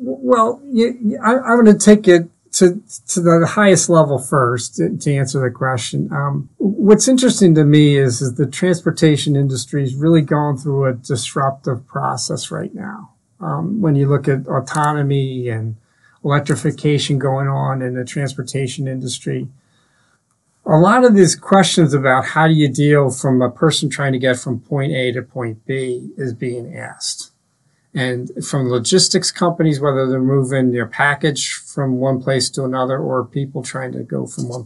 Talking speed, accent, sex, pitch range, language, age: 170 wpm, American, male, 130-165 Hz, English, 40-59